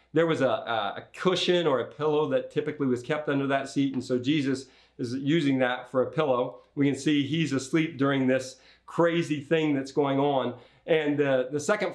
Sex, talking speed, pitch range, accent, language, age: male, 200 wpm, 120-165 Hz, American, English, 40-59